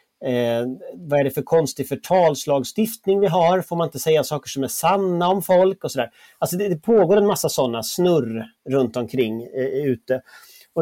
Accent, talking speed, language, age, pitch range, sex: native, 195 wpm, Swedish, 30-49, 130-175 Hz, male